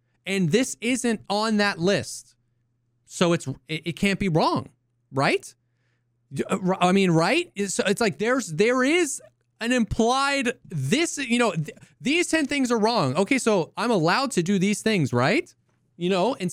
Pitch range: 130-190 Hz